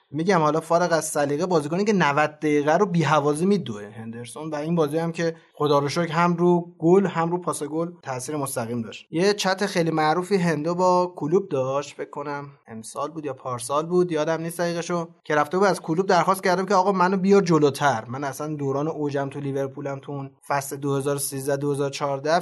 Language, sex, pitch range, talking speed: Persian, male, 145-175 Hz, 180 wpm